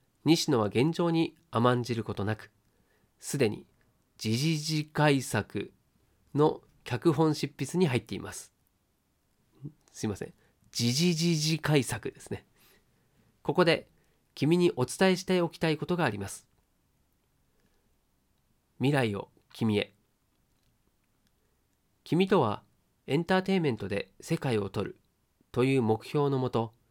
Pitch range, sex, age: 110-150 Hz, male, 40-59